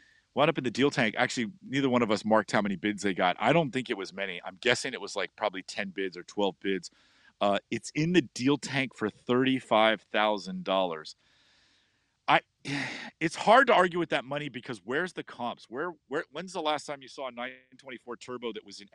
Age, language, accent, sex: 40-59, English, American, male